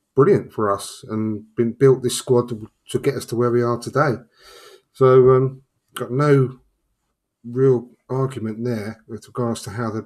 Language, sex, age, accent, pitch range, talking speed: English, male, 30-49, British, 115-130 Hz, 175 wpm